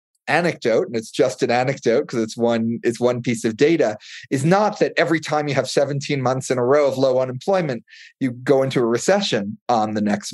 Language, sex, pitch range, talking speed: English, male, 110-150 Hz, 215 wpm